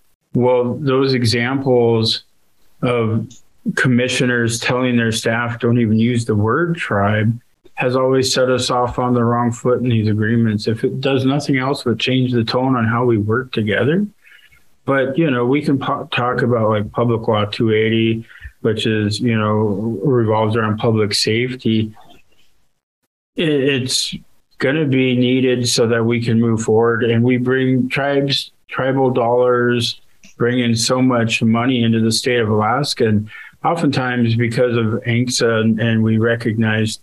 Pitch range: 110-130 Hz